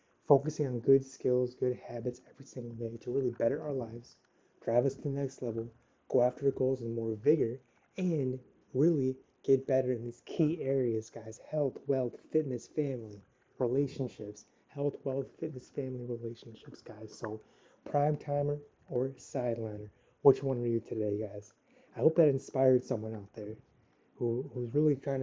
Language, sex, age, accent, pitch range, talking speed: English, male, 30-49, American, 120-140 Hz, 165 wpm